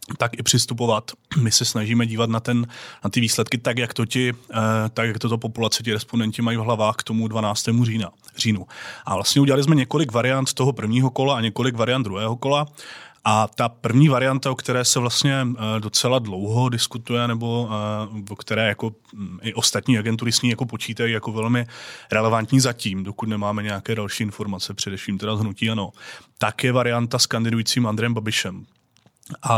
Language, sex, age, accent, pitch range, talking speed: Czech, male, 30-49, native, 110-120 Hz, 175 wpm